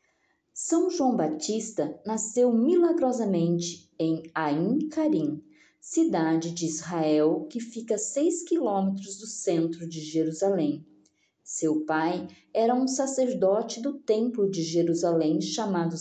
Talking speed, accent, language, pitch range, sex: 110 wpm, Brazilian, Portuguese, 160-250 Hz, female